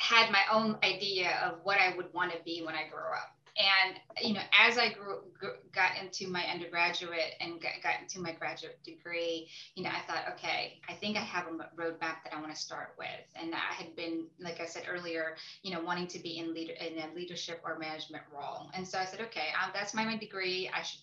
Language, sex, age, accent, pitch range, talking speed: English, female, 20-39, American, 170-205 Hz, 235 wpm